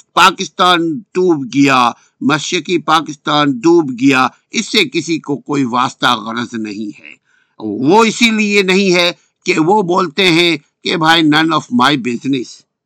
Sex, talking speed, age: male, 115 wpm, 60-79